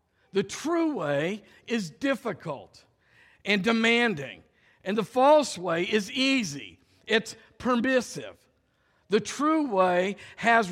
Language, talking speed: English, 105 wpm